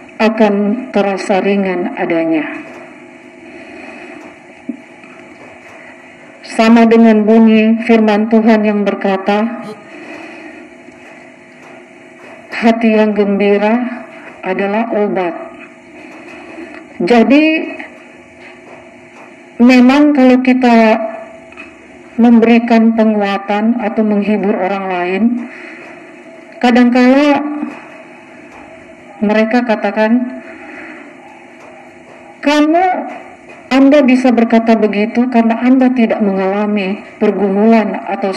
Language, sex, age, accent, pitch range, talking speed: Indonesian, female, 40-59, native, 220-325 Hz, 65 wpm